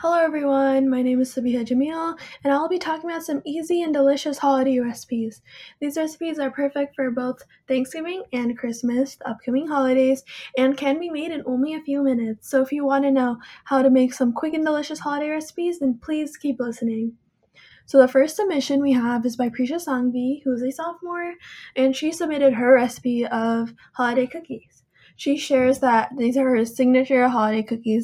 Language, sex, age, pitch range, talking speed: English, female, 10-29, 245-290 Hz, 190 wpm